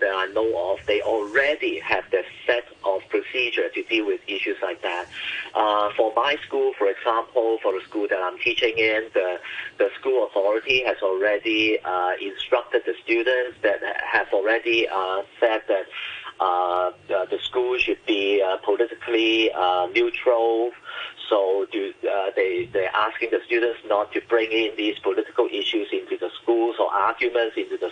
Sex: male